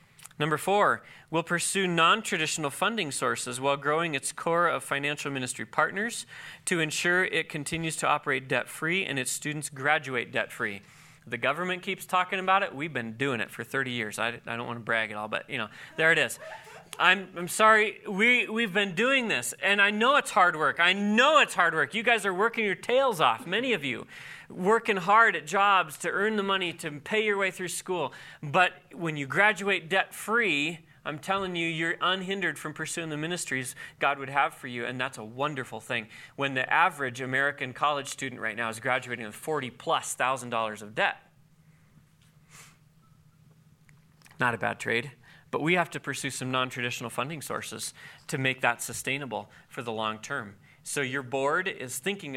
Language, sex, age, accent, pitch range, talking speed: English, male, 30-49, American, 130-185 Hz, 190 wpm